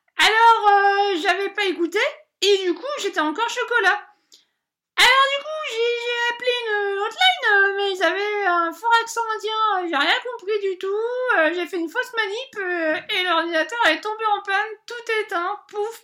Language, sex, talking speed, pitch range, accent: French, female, 170 wpm, 340-440 Hz, French